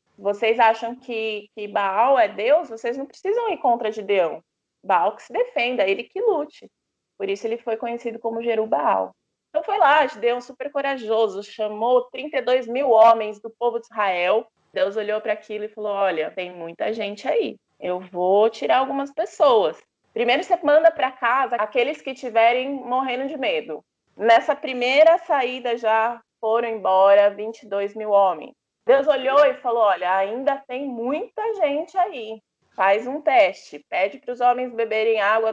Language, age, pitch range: Portuguese, 20-39, 215-275 Hz